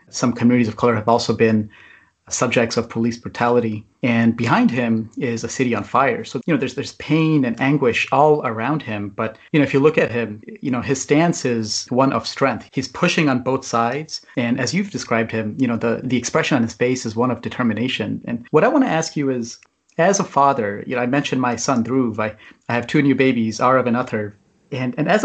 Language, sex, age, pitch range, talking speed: English, male, 30-49, 115-140 Hz, 235 wpm